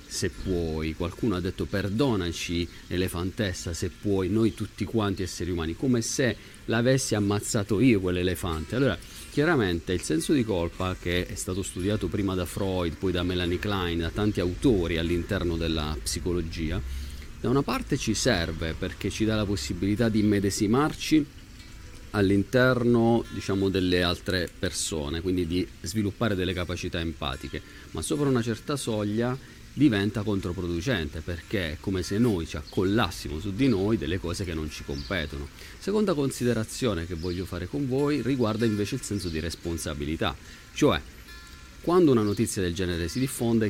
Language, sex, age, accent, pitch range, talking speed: Italian, male, 40-59, native, 85-110 Hz, 150 wpm